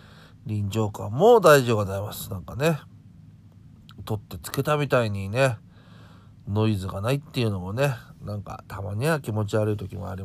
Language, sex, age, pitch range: Japanese, male, 40-59, 95-125 Hz